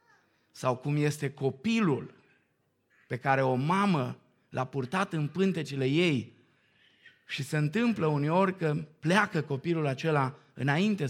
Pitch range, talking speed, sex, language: 140-185 Hz, 120 wpm, male, Romanian